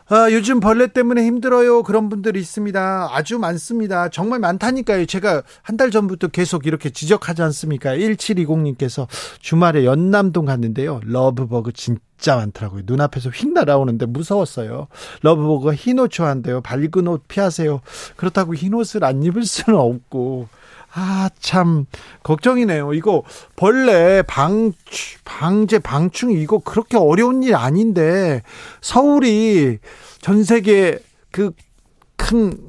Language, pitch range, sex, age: Korean, 145-205 Hz, male, 40-59